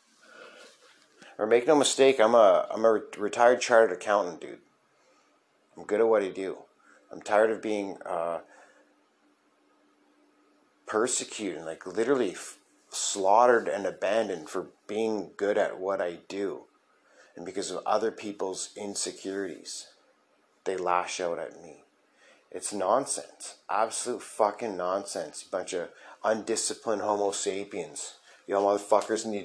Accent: American